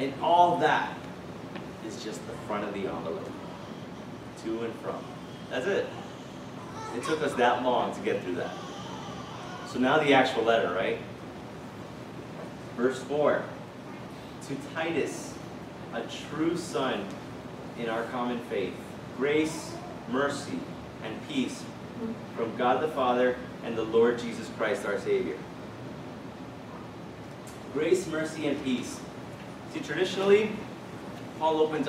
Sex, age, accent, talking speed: male, 30-49, American, 120 wpm